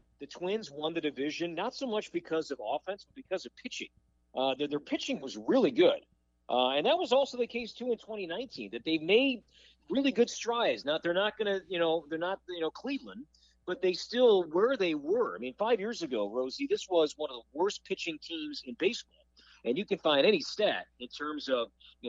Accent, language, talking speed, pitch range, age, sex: American, English, 225 wpm, 140-215 Hz, 50-69, male